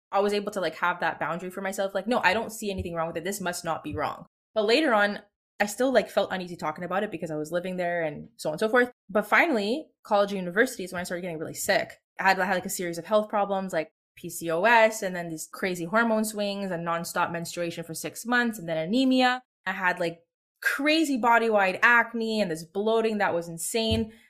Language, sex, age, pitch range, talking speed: English, female, 20-39, 180-225 Hz, 235 wpm